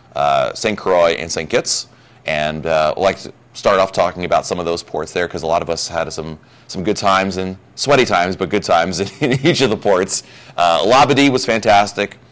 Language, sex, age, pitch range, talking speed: English, male, 30-49, 80-120 Hz, 230 wpm